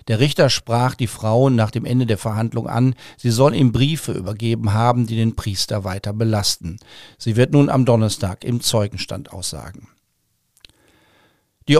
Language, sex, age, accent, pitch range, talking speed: German, male, 50-69, German, 110-135 Hz, 160 wpm